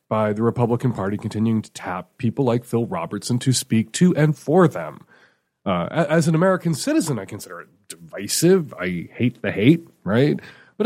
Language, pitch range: English, 105-145 Hz